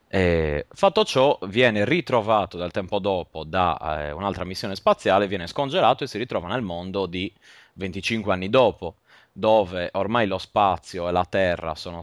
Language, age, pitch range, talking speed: Italian, 20-39, 85-105 Hz, 160 wpm